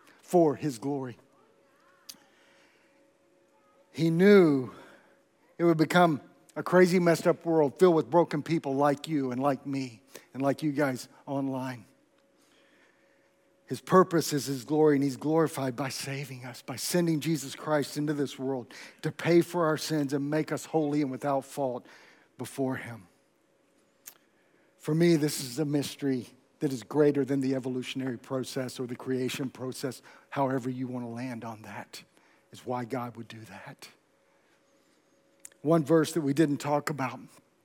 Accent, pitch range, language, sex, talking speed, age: American, 130-165 Hz, English, male, 155 wpm, 50-69